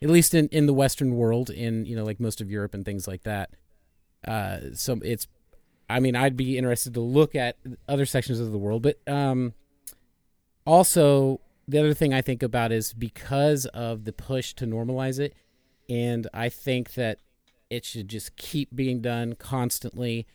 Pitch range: 110-140 Hz